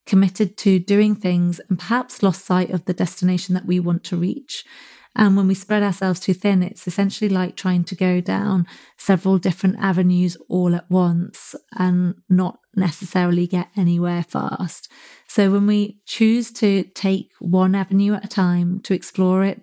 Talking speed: 170 wpm